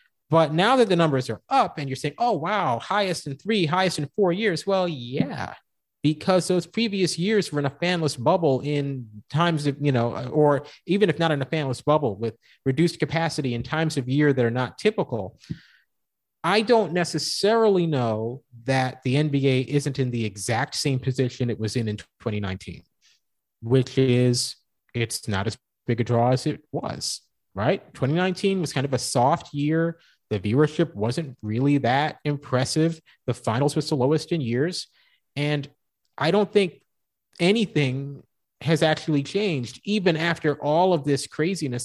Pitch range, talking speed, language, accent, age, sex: 120-165 Hz, 170 wpm, English, American, 30-49, male